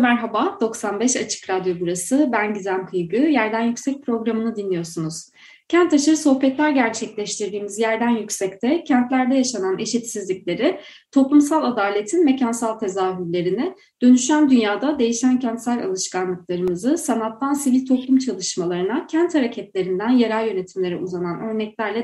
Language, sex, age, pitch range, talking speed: Turkish, female, 30-49, 205-275 Hz, 110 wpm